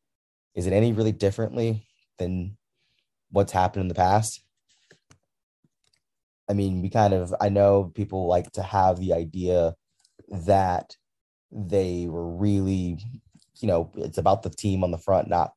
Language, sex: English, male